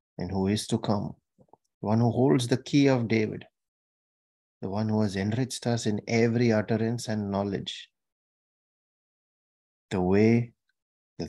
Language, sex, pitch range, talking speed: English, male, 100-115 Hz, 140 wpm